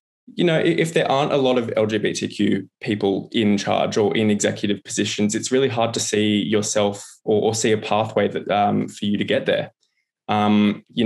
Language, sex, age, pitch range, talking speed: English, male, 20-39, 105-120 Hz, 195 wpm